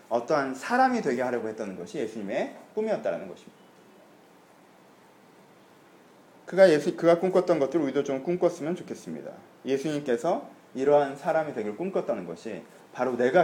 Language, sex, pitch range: Korean, male, 125-185 Hz